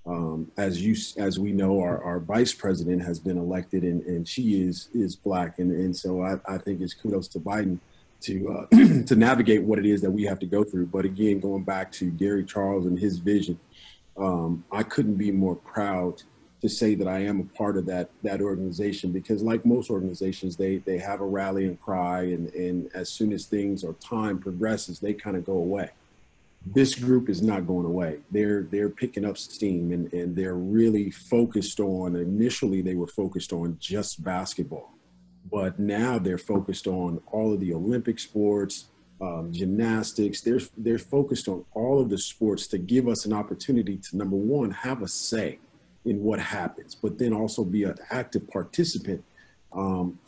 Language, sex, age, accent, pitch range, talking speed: English, male, 40-59, American, 90-110 Hz, 190 wpm